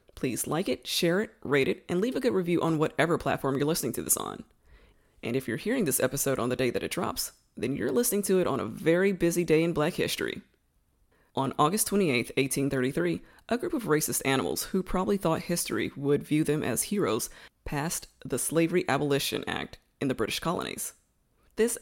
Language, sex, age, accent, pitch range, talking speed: English, female, 20-39, American, 135-170 Hz, 200 wpm